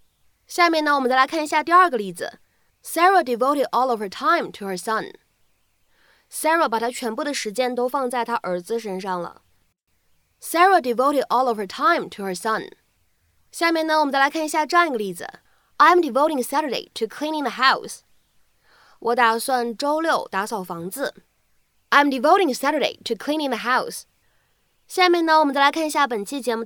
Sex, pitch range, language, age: female, 225-300 Hz, Chinese, 20-39